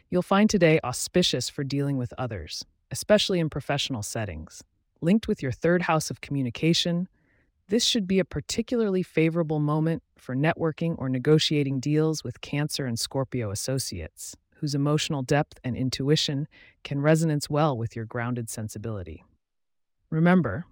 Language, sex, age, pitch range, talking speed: English, female, 30-49, 120-165 Hz, 140 wpm